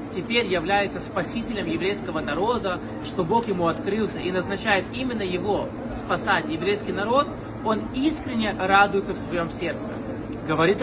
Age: 20-39